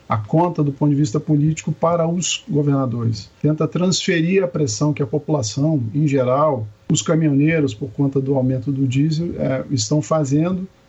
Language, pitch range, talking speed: Portuguese, 130-160 Hz, 160 wpm